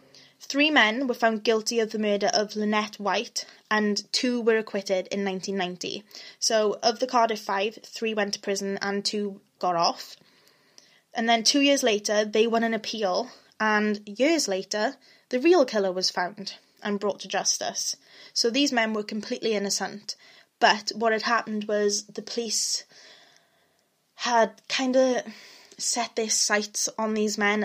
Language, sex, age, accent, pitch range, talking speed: English, female, 10-29, British, 195-220 Hz, 160 wpm